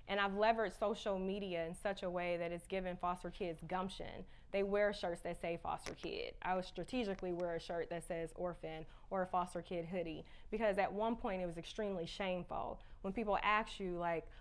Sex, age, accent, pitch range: female, 20-39, American, 180-220 Hz